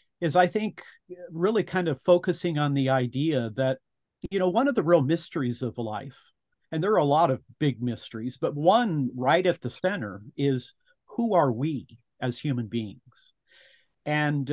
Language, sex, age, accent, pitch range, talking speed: English, male, 50-69, American, 130-165 Hz, 175 wpm